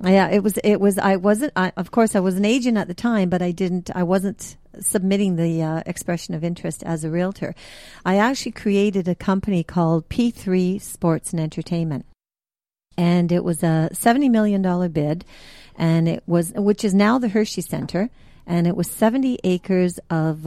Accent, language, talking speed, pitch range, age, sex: American, English, 185 wpm, 160-195 Hz, 50-69, female